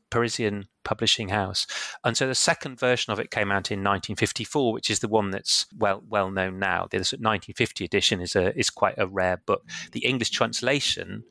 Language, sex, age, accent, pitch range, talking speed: English, male, 30-49, British, 105-125 Hz, 190 wpm